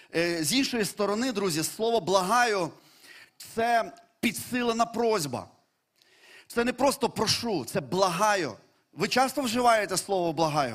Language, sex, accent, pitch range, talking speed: Ukrainian, male, native, 180-230 Hz, 115 wpm